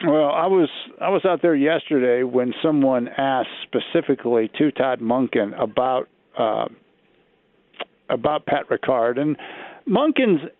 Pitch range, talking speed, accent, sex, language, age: 125-145 Hz, 125 wpm, American, male, English, 50-69